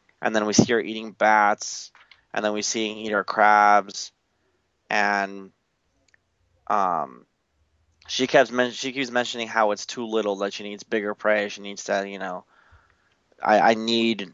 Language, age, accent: English, 20-39, American